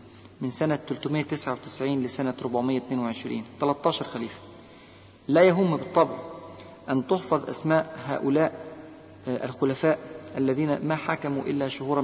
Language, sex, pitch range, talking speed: Arabic, male, 130-160 Hz, 100 wpm